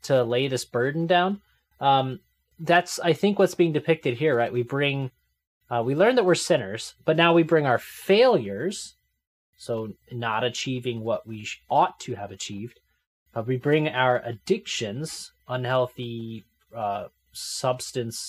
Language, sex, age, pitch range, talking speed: English, male, 20-39, 110-140 Hz, 150 wpm